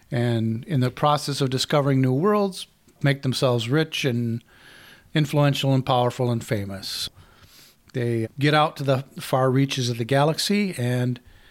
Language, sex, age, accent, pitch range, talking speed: English, male, 40-59, American, 120-140 Hz, 145 wpm